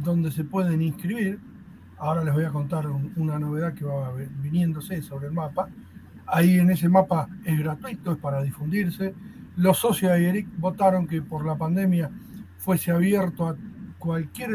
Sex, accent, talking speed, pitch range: male, Argentinian, 165 wpm, 155-210 Hz